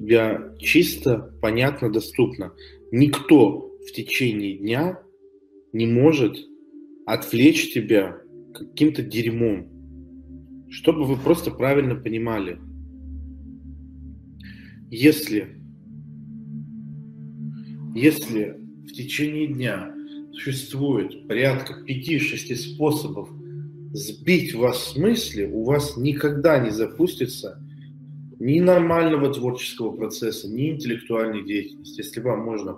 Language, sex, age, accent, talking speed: Russian, male, 40-59, native, 85 wpm